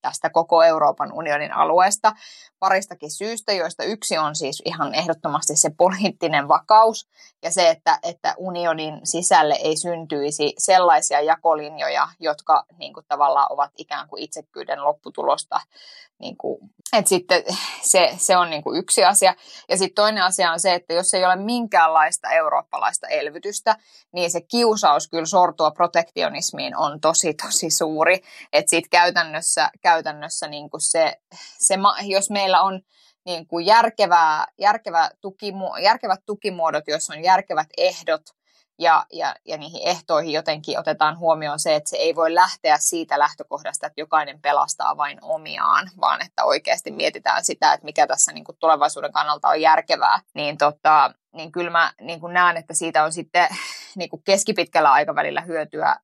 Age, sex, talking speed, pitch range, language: 20-39, female, 150 wpm, 155-190 Hz, Finnish